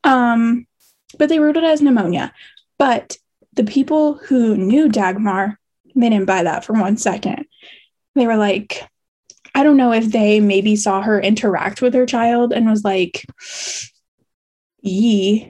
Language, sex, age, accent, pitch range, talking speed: English, female, 10-29, American, 210-255 Hz, 150 wpm